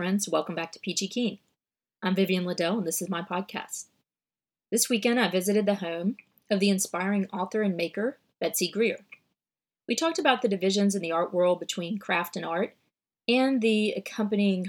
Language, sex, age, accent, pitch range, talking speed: English, female, 30-49, American, 180-220 Hz, 175 wpm